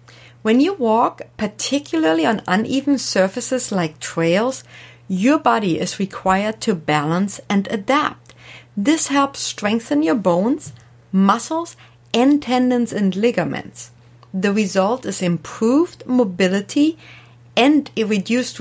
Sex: female